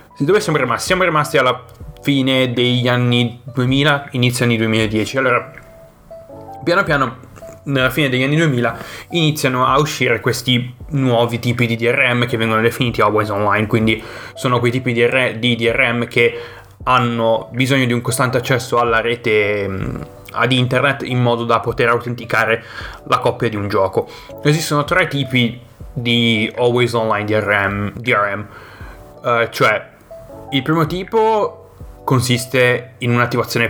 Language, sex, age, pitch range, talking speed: Italian, male, 20-39, 115-130 Hz, 140 wpm